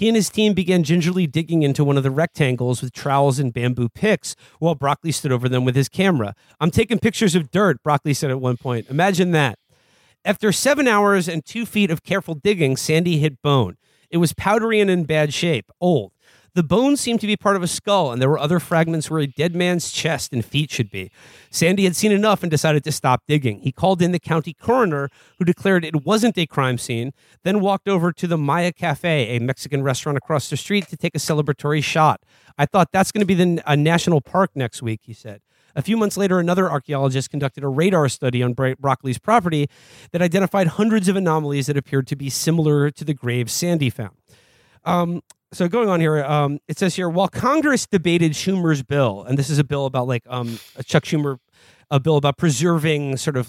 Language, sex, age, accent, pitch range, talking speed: English, male, 40-59, American, 135-180 Hz, 215 wpm